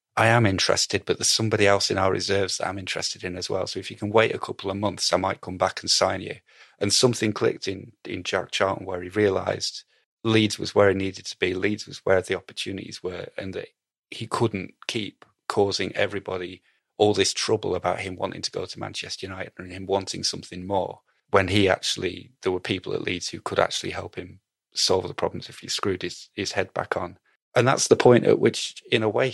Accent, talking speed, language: British, 225 wpm, English